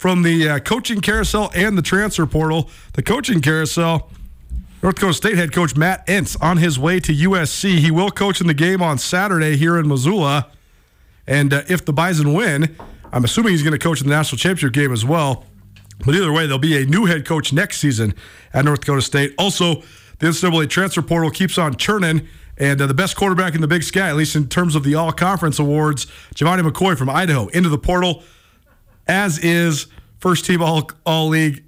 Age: 40-59